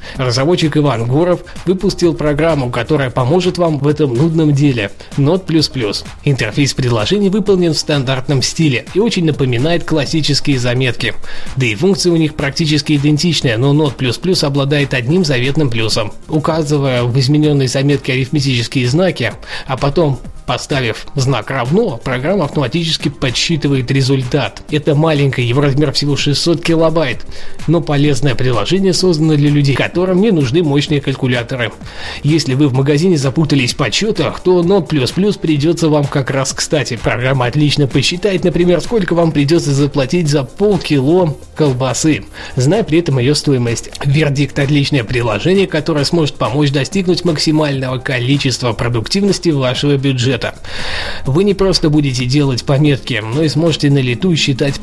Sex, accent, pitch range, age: male, native, 130-160 Hz, 20-39